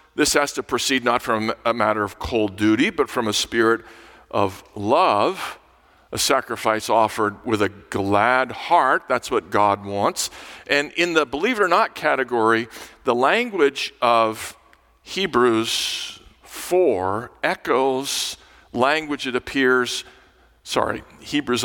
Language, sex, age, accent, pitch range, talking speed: English, male, 50-69, American, 105-130 Hz, 130 wpm